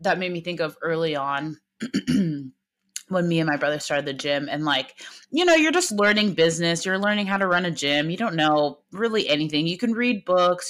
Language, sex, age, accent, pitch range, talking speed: English, female, 20-39, American, 170-235 Hz, 220 wpm